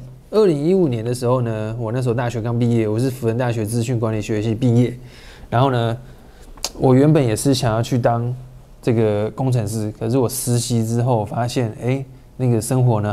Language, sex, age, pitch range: Chinese, male, 20-39, 115-140 Hz